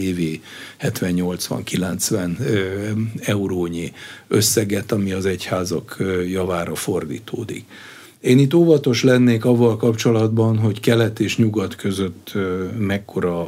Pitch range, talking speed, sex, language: 95-120 Hz, 95 wpm, male, Hungarian